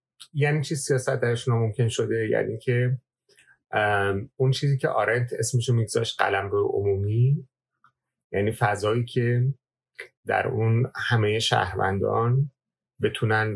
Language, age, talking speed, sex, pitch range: Persian, 30-49, 105 wpm, male, 105-130 Hz